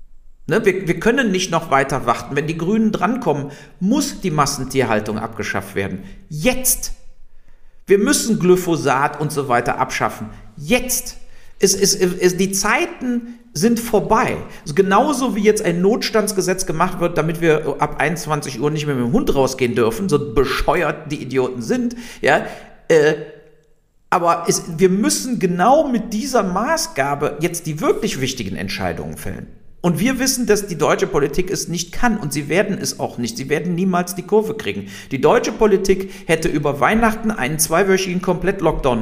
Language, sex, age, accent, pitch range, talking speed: German, male, 50-69, German, 150-220 Hz, 150 wpm